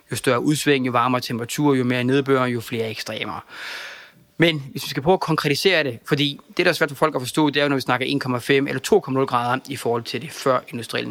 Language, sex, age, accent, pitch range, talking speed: Danish, male, 20-39, native, 125-145 Hz, 245 wpm